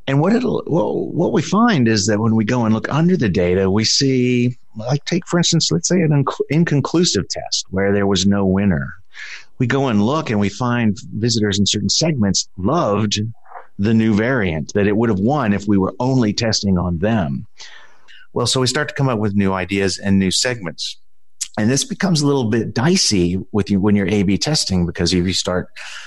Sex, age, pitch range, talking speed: male, 50-69, 90-120 Hz, 205 wpm